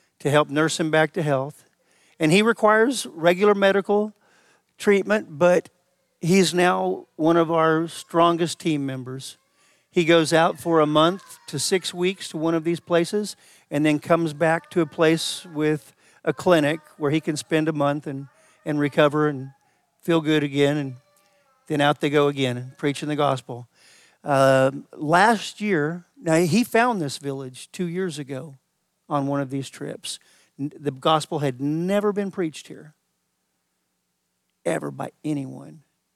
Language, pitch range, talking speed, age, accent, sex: English, 135-170 Hz, 155 wpm, 50-69, American, male